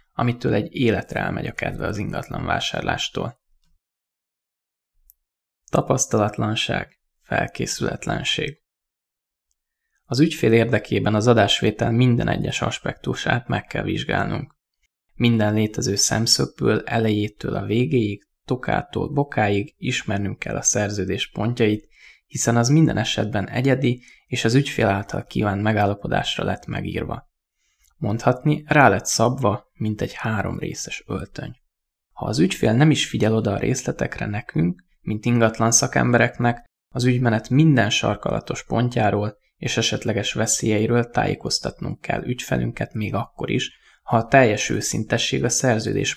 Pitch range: 105-125 Hz